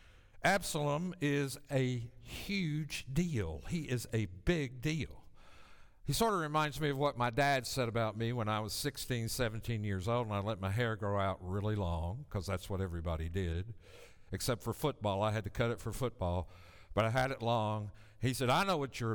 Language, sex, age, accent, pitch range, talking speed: English, male, 60-79, American, 100-145 Hz, 200 wpm